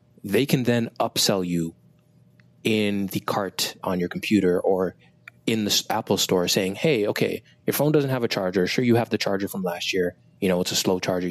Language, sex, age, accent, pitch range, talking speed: English, male, 20-39, American, 90-110 Hz, 205 wpm